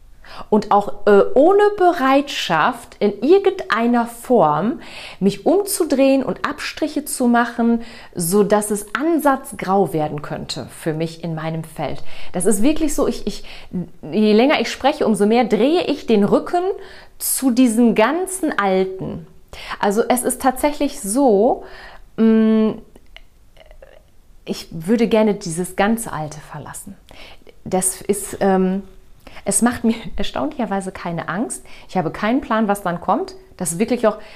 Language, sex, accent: German, female, German